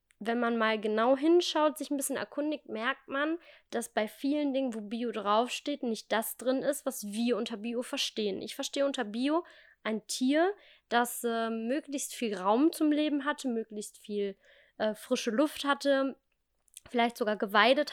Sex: female